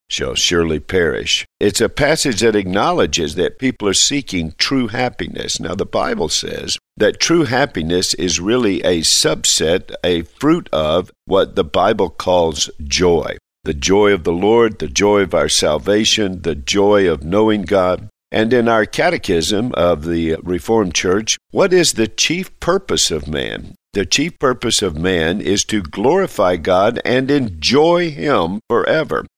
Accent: American